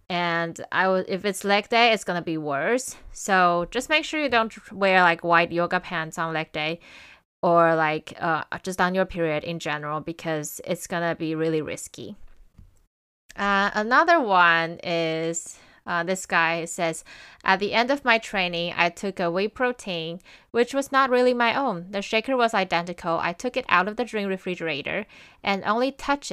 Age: 20-39